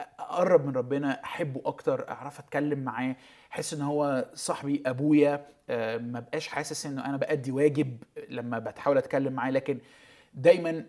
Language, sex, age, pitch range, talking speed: Arabic, male, 20-39, 125-150 Hz, 140 wpm